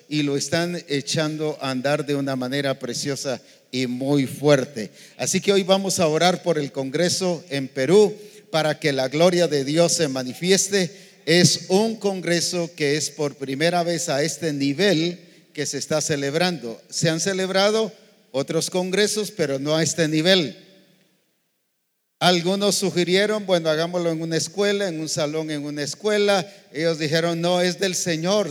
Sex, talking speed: male, 160 wpm